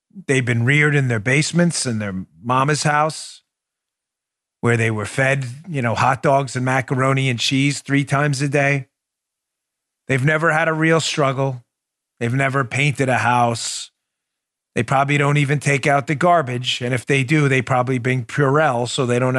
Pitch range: 120-145 Hz